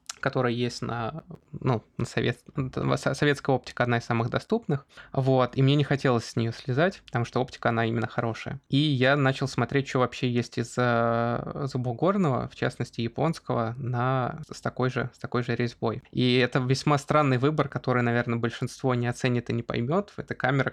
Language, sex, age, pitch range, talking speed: Russian, male, 20-39, 120-140 Hz, 160 wpm